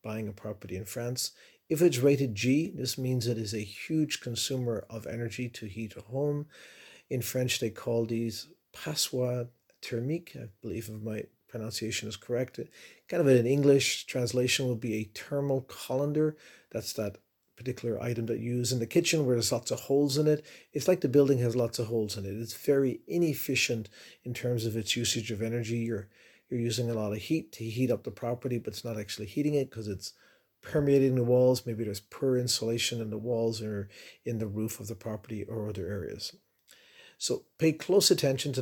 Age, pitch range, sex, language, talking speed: 40-59, 110-135 Hz, male, English, 200 wpm